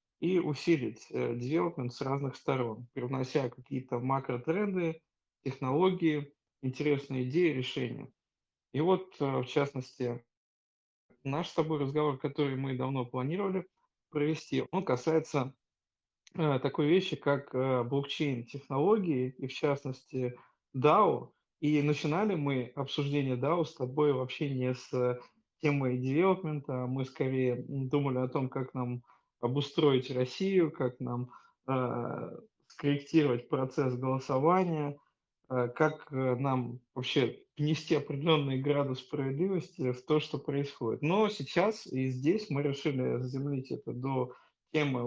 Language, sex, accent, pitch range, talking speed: Russian, male, native, 125-155 Hz, 115 wpm